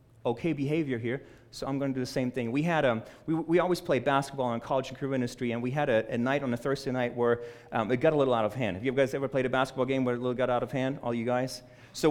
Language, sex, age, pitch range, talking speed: English, male, 30-49, 130-160 Hz, 310 wpm